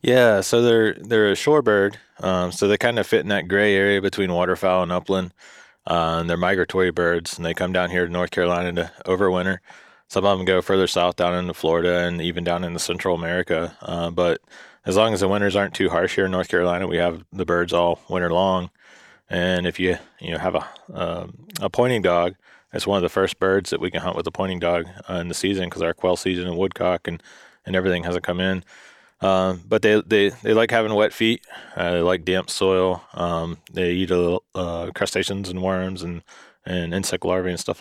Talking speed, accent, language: 225 wpm, American, English